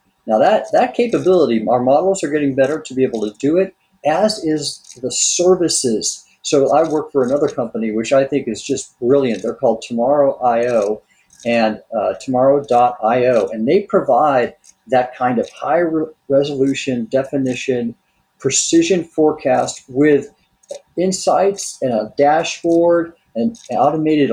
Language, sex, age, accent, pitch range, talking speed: English, male, 50-69, American, 125-165 Hz, 135 wpm